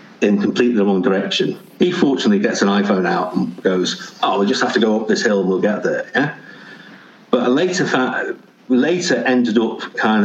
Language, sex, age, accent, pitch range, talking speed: English, male, 50-69, British, 100-125 Hz, 210 wpm